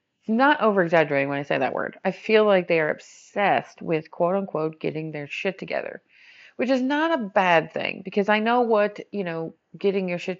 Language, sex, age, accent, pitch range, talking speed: English, female, 40-59, American, 165-225 Hz, 200 wpm